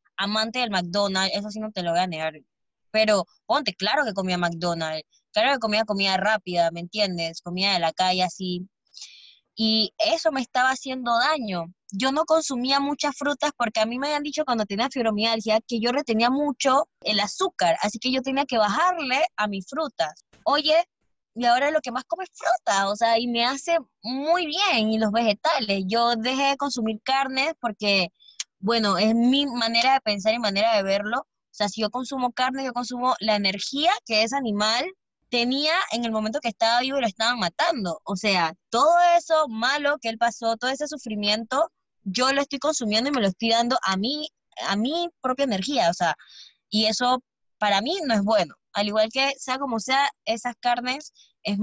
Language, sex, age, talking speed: Spanish, female, 20-39, 195 wpm